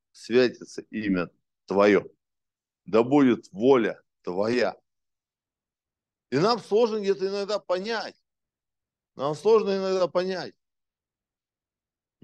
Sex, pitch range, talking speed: male, 150-200 Hz, 85 wpm